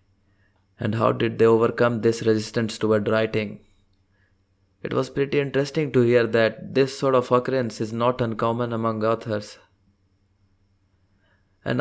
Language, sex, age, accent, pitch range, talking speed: English, male, 20-39, Indian, 100-120 Hz, 130 wpm